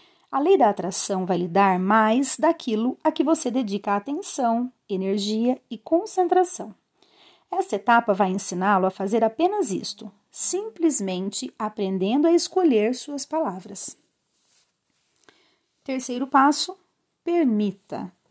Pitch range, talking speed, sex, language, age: 205-315 Hz, 110 wpm, female, Portuguese, 40-59